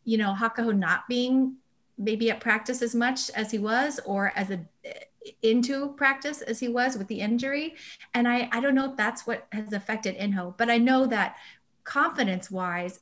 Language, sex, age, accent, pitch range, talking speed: English, female, 30-49, American, 195-250 Hz, 185 wpm